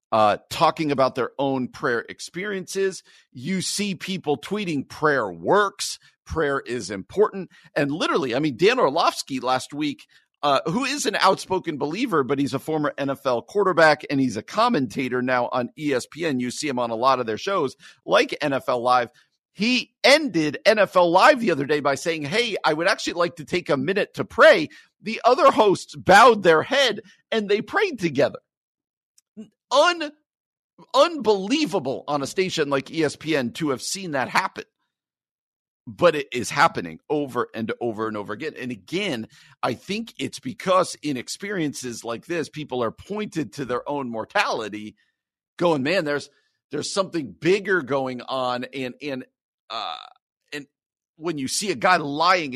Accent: American